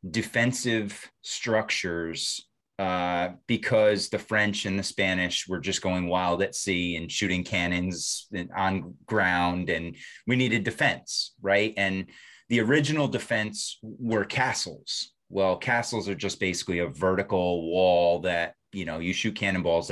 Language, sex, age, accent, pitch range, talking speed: English, male, 30-49, American, 90-110 Hz, 135 wpm